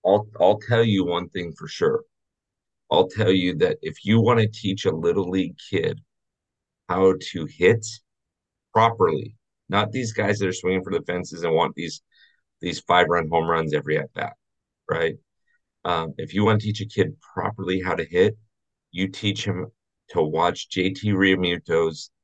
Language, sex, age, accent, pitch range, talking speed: English, male, 40-59, American, 95-110 Hz, 170 wpm